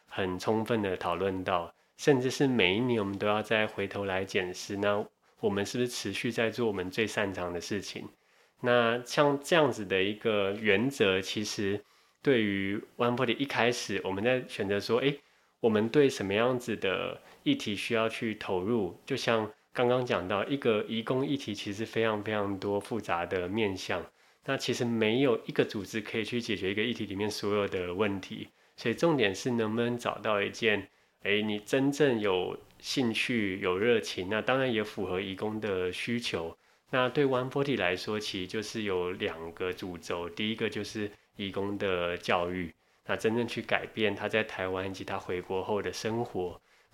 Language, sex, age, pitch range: Chinese, male, 20-39, 100-120 Hz